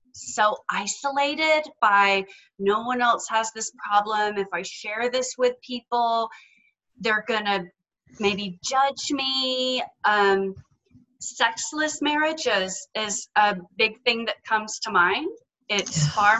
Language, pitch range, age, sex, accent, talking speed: English, 195-240 Hz, 30-49, female, American, 130 wpm